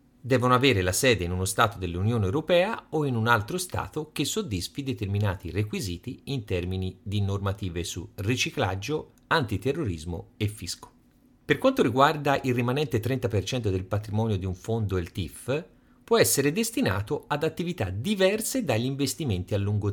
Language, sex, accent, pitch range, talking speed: Italian, male, native, 100-140 Hz, 150 wpm